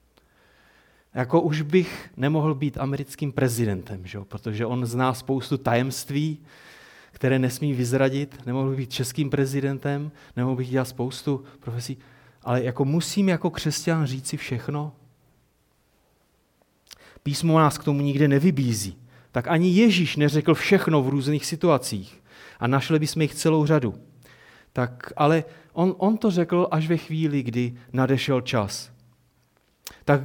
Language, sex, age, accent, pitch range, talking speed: Czech, male, 30-49, native, 120-160 Hz, 130 wpm